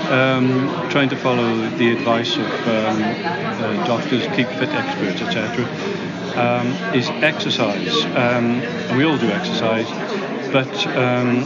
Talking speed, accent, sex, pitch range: 125 wpm, British, male, 115-135 Hz